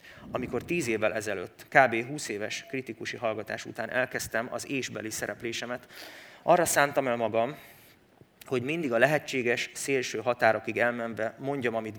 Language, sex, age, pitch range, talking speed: Hungarian, male, 30-49, 110-130 Hz, 135 wpm